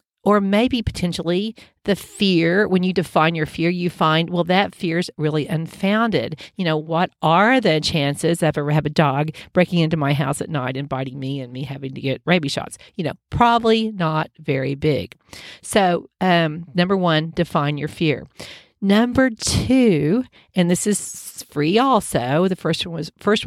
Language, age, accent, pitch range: English, 40-59, American, 160-205 Hz